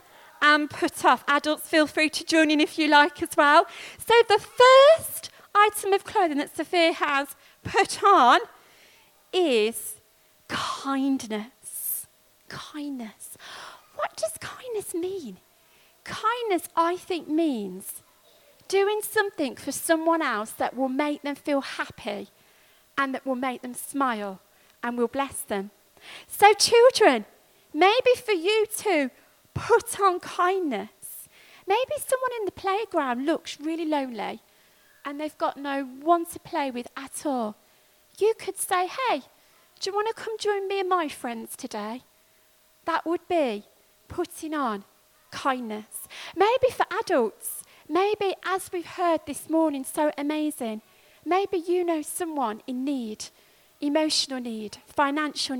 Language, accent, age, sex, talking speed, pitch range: English, British, 40-59, female, 135 wpm, 275-375 Hz